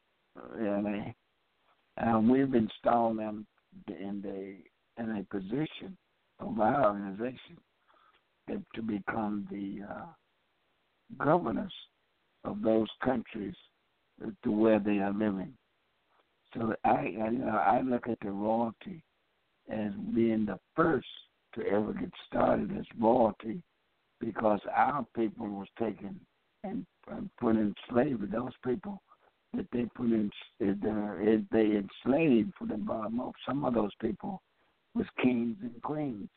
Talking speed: 120 wpm